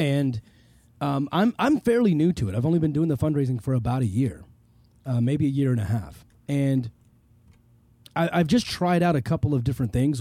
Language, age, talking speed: English, 30-49, 210 wpm